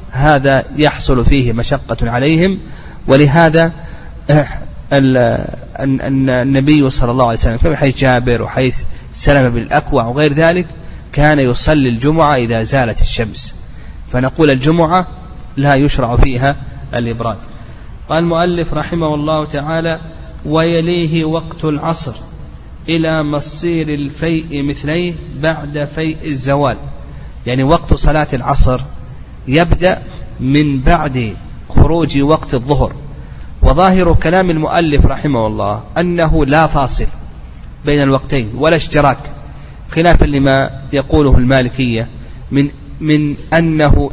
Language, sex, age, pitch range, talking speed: Arabic, male, 30-49, 130-160 Hz, 100 wpm